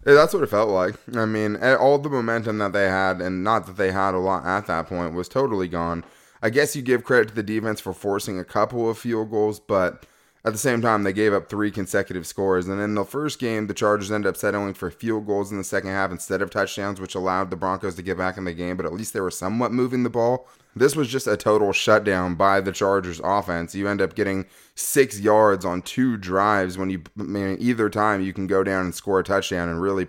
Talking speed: 250 wpm